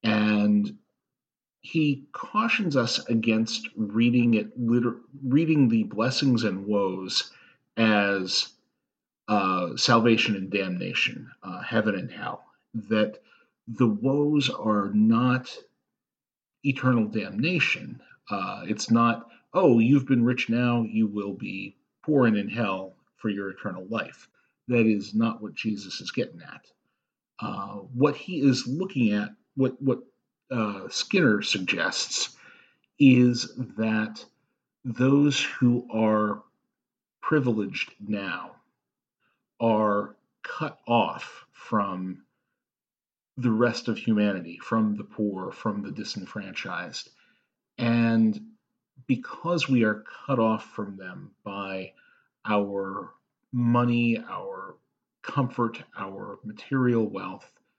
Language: English